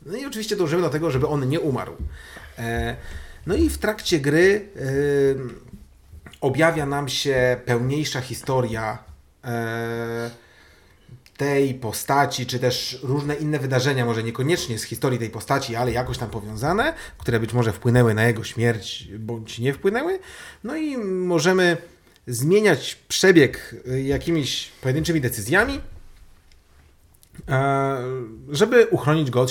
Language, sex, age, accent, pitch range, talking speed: Polish, male, 30-49, native, 110-145 Hz, 120 wpm